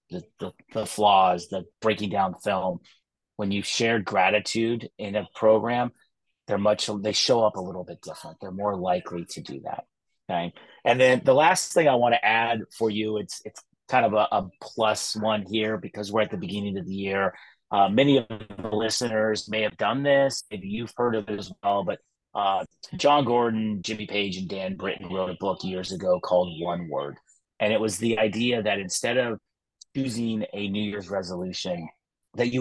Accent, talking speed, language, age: American, 195 wpm, English, 30-49